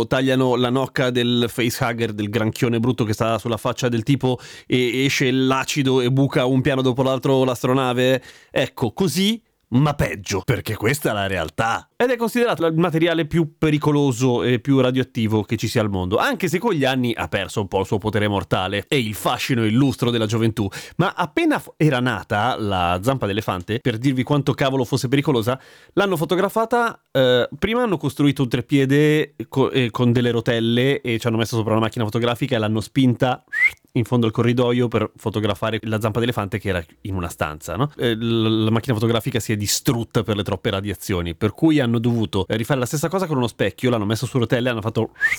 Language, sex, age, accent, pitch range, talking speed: Italian, male, 30-49, native, 115-145 Hz, 190 wpm